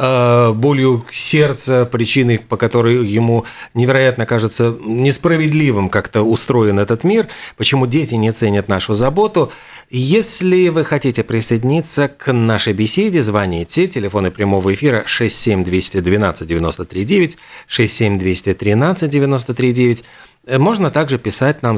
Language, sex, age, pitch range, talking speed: Russian, male, 40-59, 110-145 Hz, 105 wpm